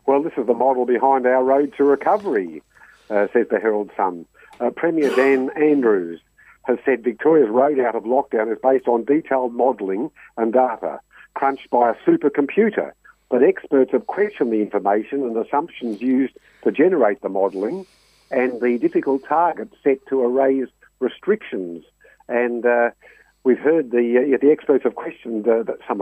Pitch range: 115-135 Hz